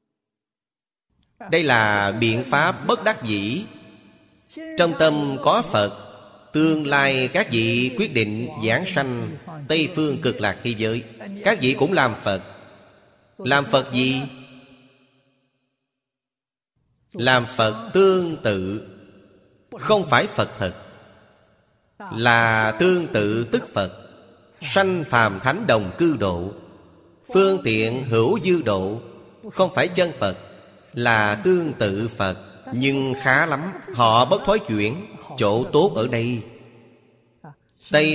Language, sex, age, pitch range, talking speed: Vietnamese, male, 30-49, 115-145 Hz, 120 wpm